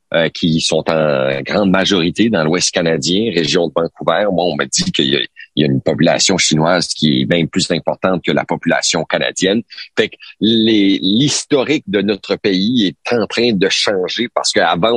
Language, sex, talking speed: French, male, 190 wpm